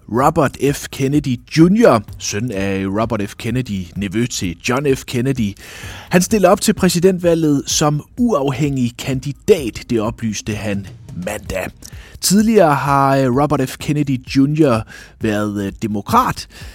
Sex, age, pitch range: male, 30-49, 100-145 Hz